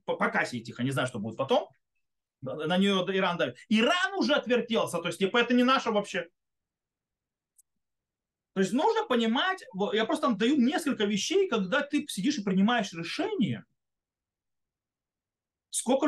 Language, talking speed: Russian, 140 wpm